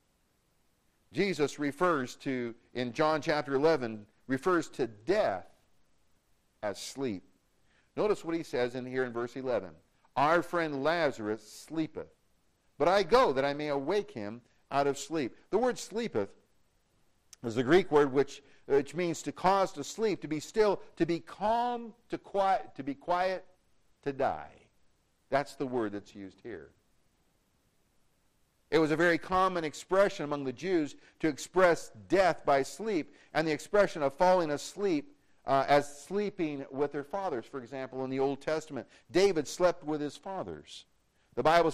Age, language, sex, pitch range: 50-69, English, male, 140-180 Hz